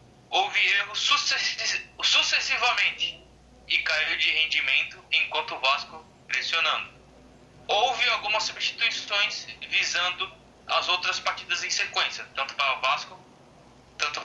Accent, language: Brazilian, Portuguese